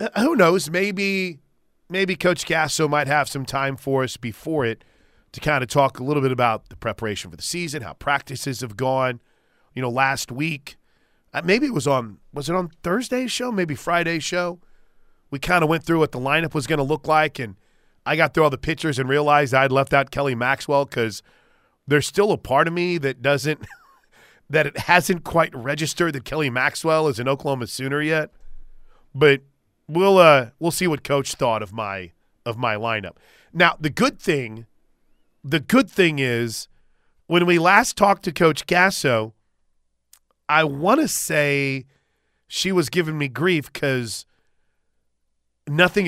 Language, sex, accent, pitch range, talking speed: English, male, American, 130-170 Hz, 175 wpm